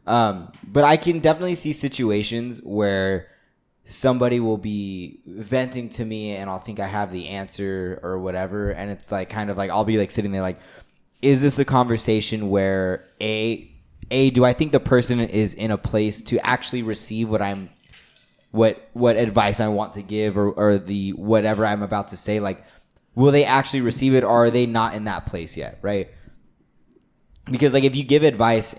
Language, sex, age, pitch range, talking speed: English, male, 20-39, 100-120 Hz, 190 wpm